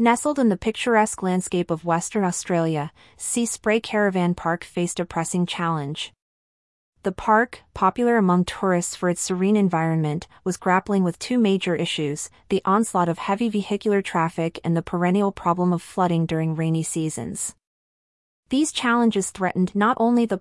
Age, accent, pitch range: 30-49, American, 170-205 Hz